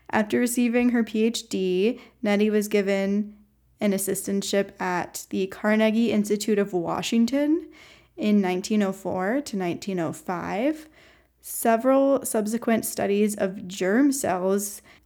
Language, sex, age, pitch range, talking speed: English, female, 10-29, 190-225 Hz, 100 wpm